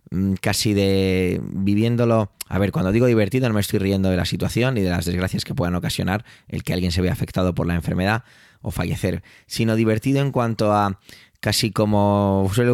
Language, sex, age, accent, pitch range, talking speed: Spanish, male, 20-39, Spanish, 95-115 Hz, 195 wpm